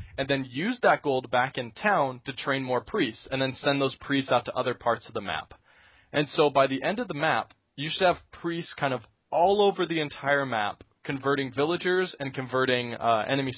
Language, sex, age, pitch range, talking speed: English, male, 20-39, 125-150 Hz, 215 wpm